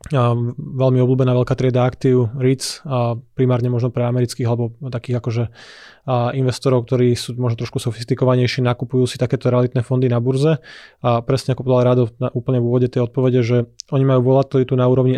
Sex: male